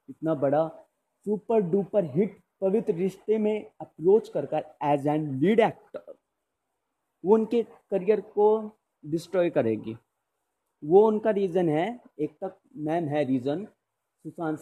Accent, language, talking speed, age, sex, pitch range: native, Hindi, 125 wpm, 30-49, male, 135-185 Hz